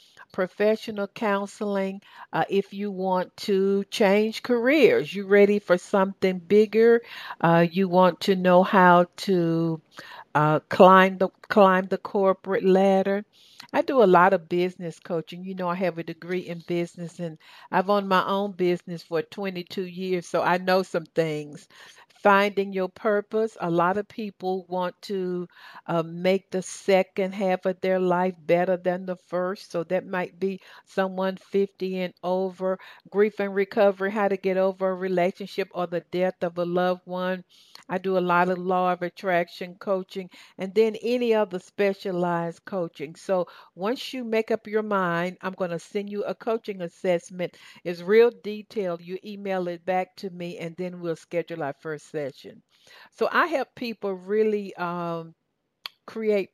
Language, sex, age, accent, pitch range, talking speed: English, female, 50-69, American, 175-200 Hz, 165 wpm